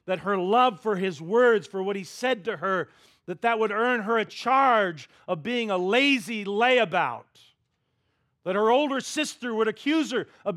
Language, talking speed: English, 180 wpm